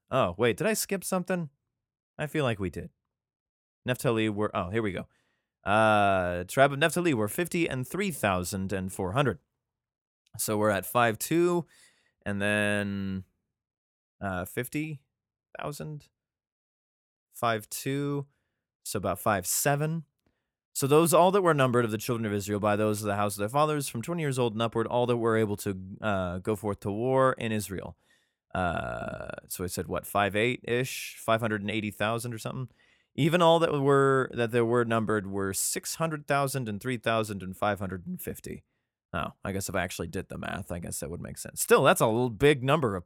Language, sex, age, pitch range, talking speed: English, male, 20-39, 100-135 Hz, 185 wpm